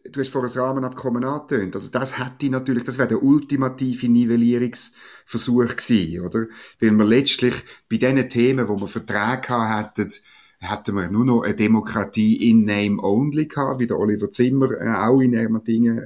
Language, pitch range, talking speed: German, 105-130 Hz, 165 wpm